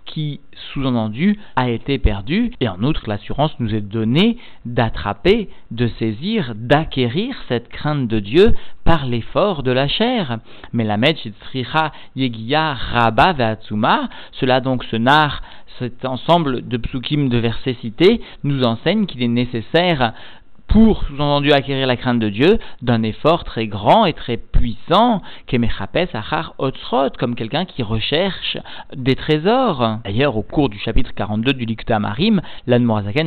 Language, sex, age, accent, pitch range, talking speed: French, male, 50-69, French, 115-160 Hz, 140 wpm